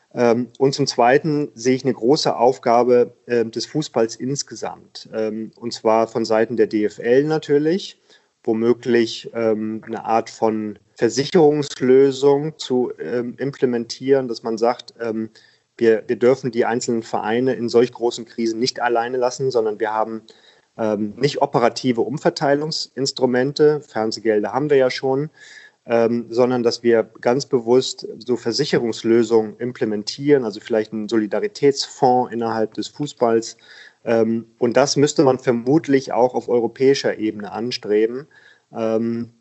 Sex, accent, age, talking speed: male, German, 30-49, 130 wpm